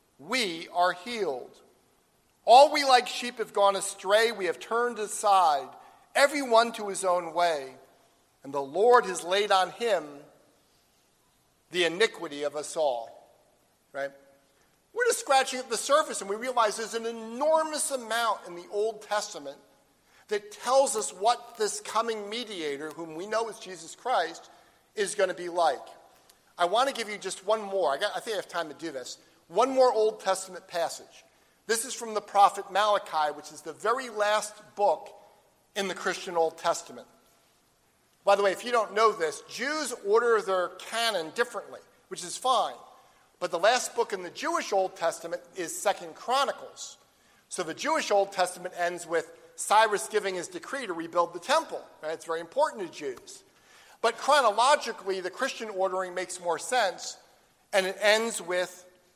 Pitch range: 175-240 Hz